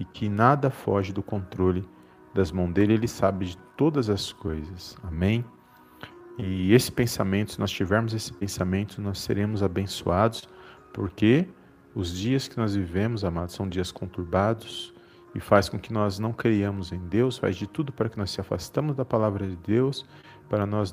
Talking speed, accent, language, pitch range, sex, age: 170 wpm, Brazilian, Portuguese, 95-120 Hz, male, 40-59